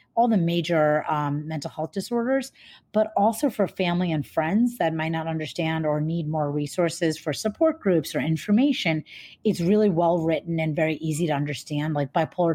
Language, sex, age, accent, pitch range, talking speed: English, female, 30-49, American, 160-200 Hz, 170 wpm